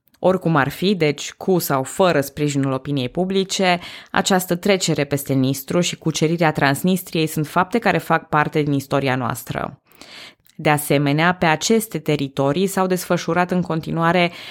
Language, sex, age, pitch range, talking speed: Romanian, female, 20-39, 140-170 Hz, 140 wpm